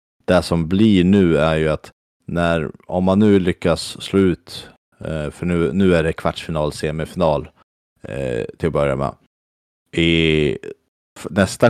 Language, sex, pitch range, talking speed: Swedish, male, 75-90 Hz, 135 wpm